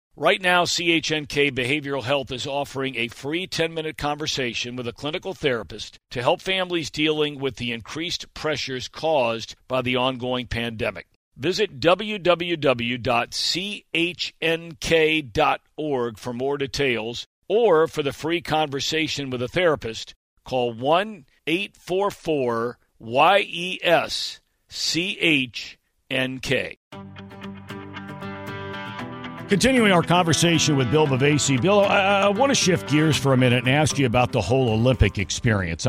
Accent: American